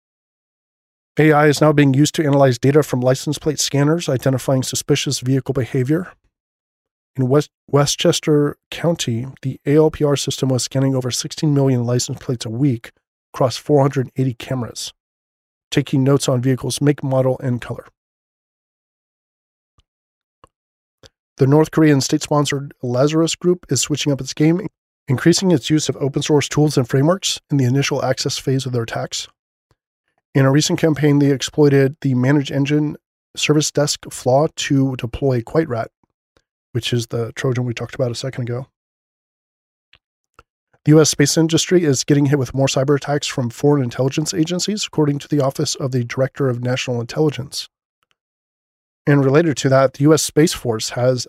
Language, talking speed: English, 150 wpm